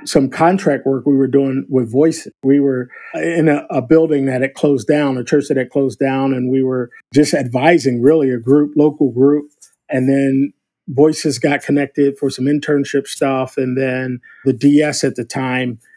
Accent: American